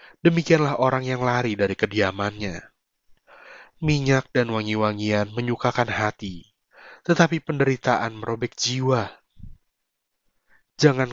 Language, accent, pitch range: Indonesian, native, 110-135 Hz